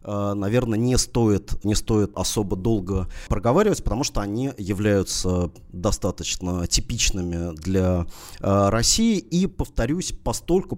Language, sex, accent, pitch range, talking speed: Russian, male, native, 100-125 Hz, 100 wpm